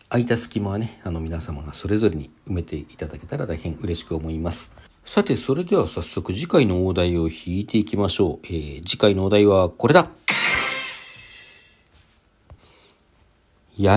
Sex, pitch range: male, 85-120 Hz